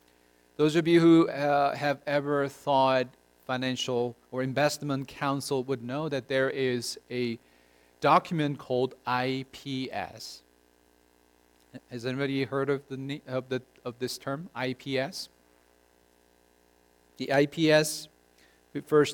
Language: English